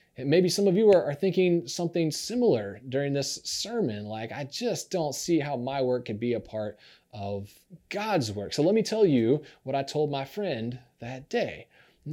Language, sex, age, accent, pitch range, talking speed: English, male, 20-39, American, 135-195 Hz, 195 wpm